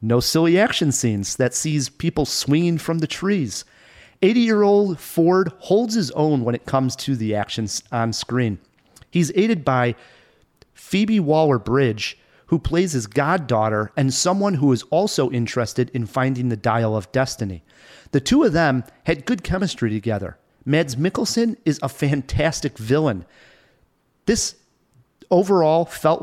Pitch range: 125-180 Hz